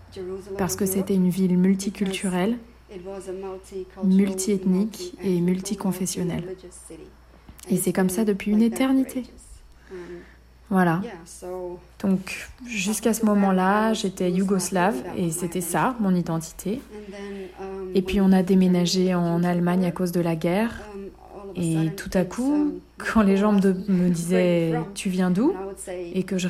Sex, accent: female, French